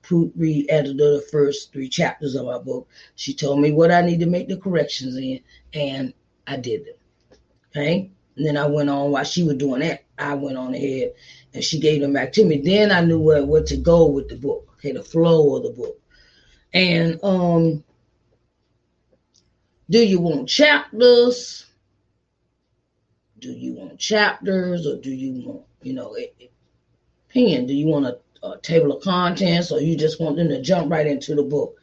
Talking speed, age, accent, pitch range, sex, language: 185 wpm, 30-49, American, 145-180 Hz, female, English